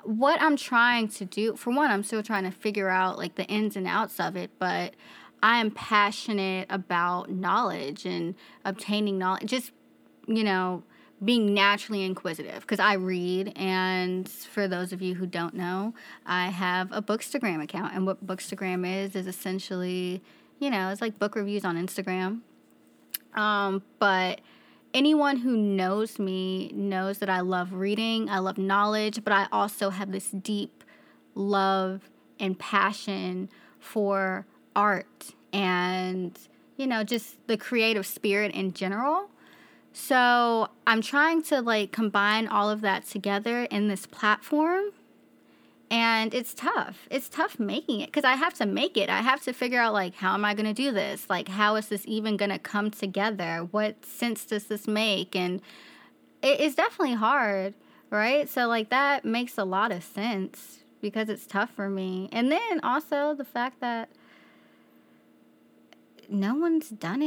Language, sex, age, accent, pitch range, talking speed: English, female, 20-39, American, 185-230 Hz, 160 wpm